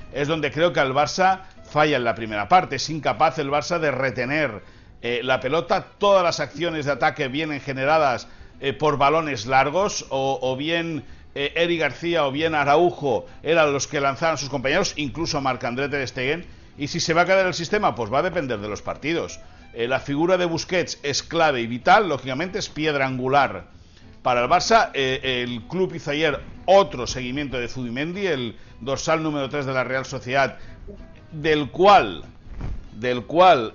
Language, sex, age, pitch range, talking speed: Spanish, male, 60-79, 125-160 Hz, 185 wpm